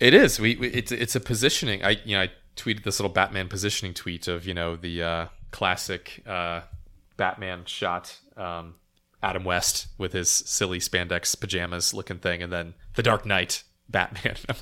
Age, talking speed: 30-49, 180 wpm